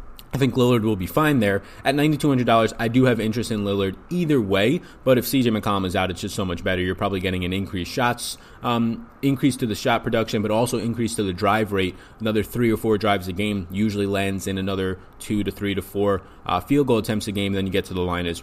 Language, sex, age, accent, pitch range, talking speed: English, male, 20-39, American, 100-120 Hz, 250 wpm